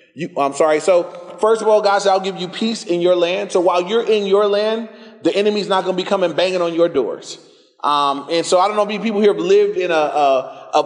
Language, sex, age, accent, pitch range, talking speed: English, male, 30-49, American, 155-205 Hz, 265 wpm